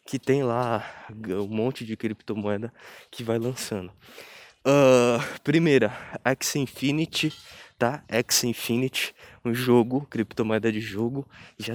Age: 20-39